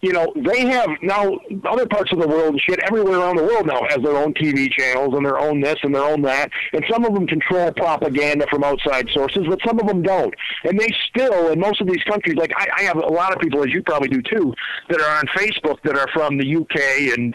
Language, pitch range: English, 145-195 Hz